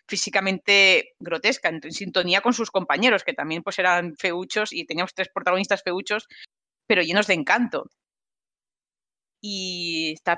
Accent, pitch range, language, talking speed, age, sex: Spanish, 160-190 Hz, English, 135 wpm, 30-49, female